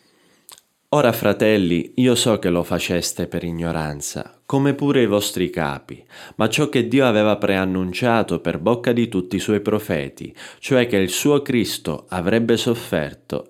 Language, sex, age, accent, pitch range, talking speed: Italian, male, 20-39, native, 90-115 Hz, 150 wpm